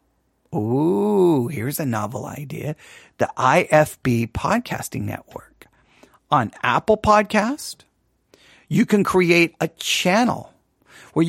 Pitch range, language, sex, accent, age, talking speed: 155-200 Hz, English, male, American, 50-69, 95 wpm